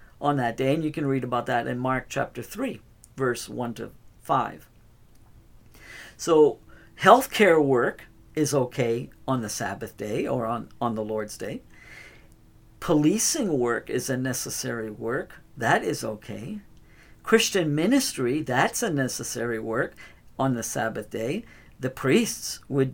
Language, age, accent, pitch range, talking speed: English, 50-69, American, 120-180 Hz, 145 wpm